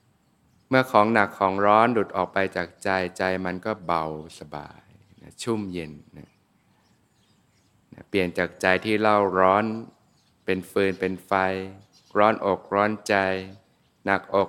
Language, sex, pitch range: Thai, male, 90-110 Hz